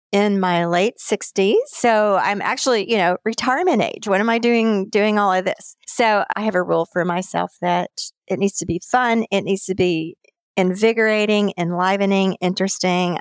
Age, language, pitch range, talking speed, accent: 40-59, English, 180-220 Hz, 175 wpm, American